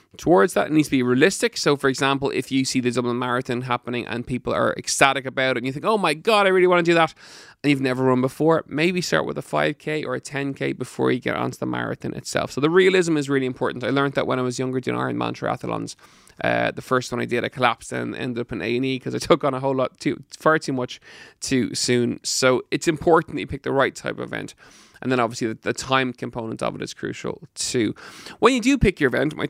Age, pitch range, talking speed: 20-39, 125-150 Hz, 260 wpm